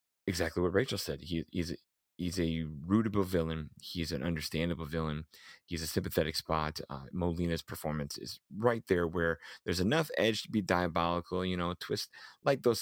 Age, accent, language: 30-49, American, English